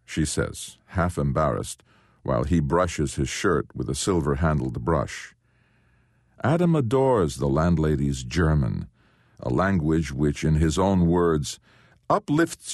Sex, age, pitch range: male, 50-69, 80-115 Hz